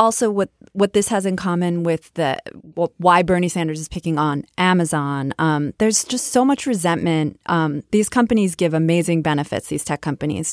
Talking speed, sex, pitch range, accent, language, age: 180 wpm, female, 155-185 Hz, American, English, 20-39